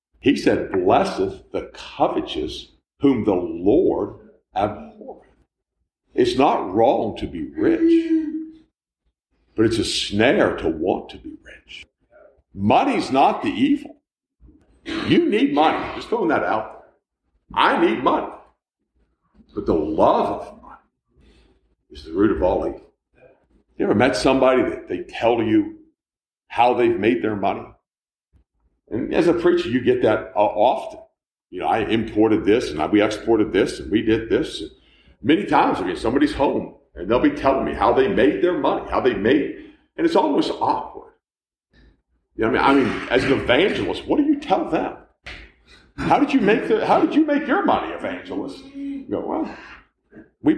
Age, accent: 50-69, American